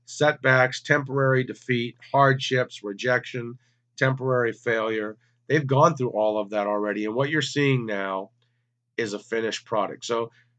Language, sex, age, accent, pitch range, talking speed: English, male, 40-59, American, 115-140 Hz, 135 wpm